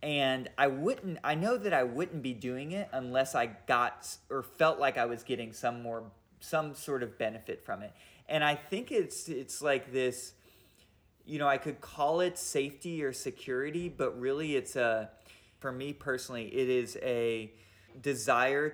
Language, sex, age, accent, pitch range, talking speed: English, male, 20-39, American, 115-140 Hz, 175 wpm